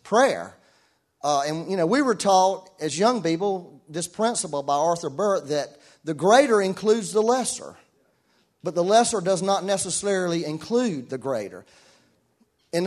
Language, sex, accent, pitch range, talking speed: English, male, American, 160-245 Hz, 150 wpm